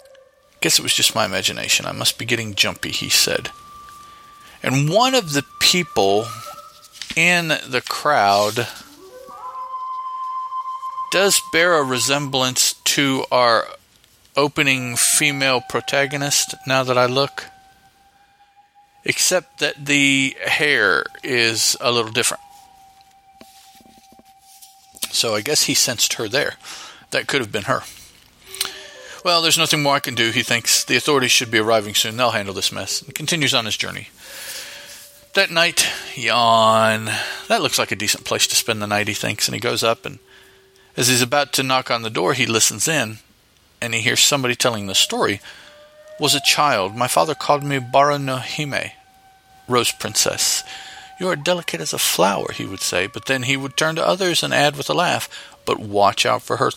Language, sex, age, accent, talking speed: English, male, 40-59, American, 160 wpm